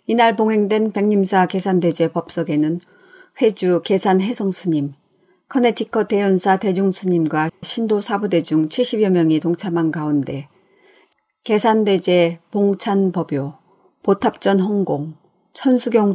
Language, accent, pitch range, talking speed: English, Korean, 170-215 Hz, 80 wpm